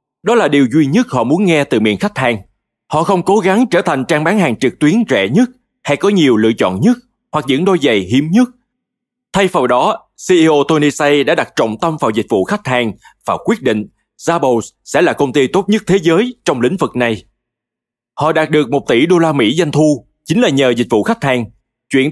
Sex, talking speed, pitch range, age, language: male, 235 wpm, 130-195 Hz, 20-39, Vietnamese